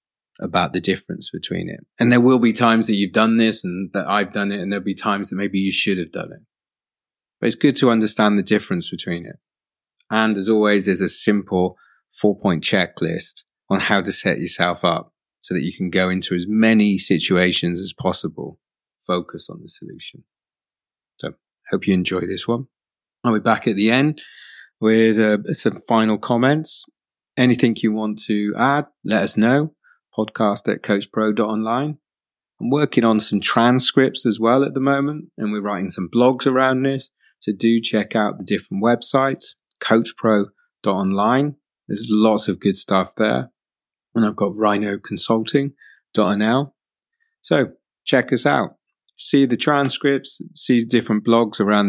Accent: British